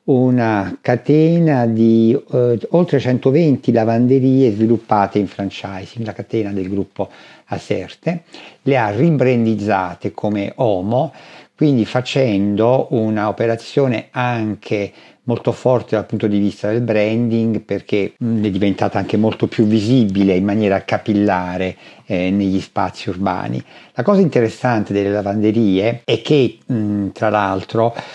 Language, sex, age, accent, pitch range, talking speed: Italian, male, 50-69, native, 100-125 Hz, 115 wpm